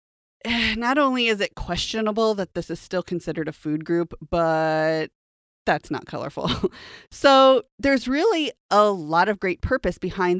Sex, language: female, English